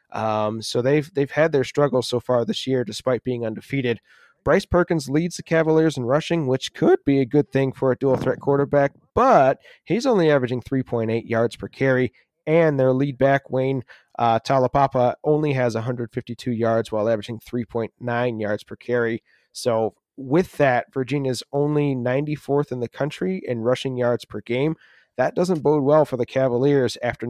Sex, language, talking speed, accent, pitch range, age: male, English, 175 wpm, American, 120-140 Hz, 30-49